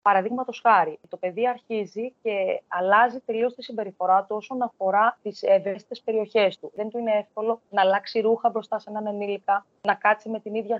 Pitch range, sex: 185-235 Hz, female